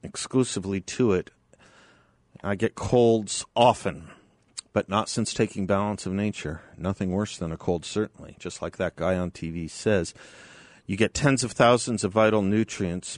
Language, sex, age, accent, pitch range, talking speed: English, male, 50-69, American, 90-115 Hz, 160 wpm